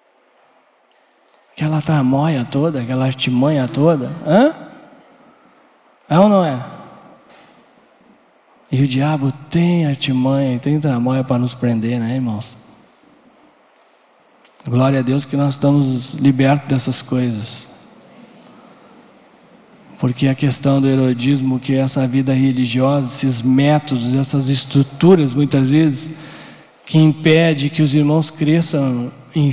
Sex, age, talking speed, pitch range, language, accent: male, 20-39, 110 wpm, 130-155 Hz, Portuguese, Brazilian